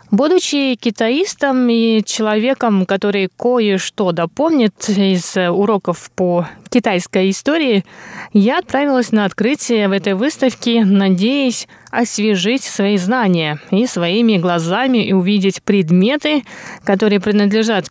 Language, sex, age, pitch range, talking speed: Russian, female, 20-39, 195-245 Hz, 105 wpm